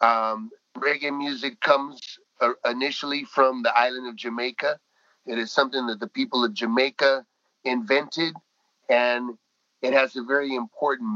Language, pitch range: Hindi, 120-155 Hz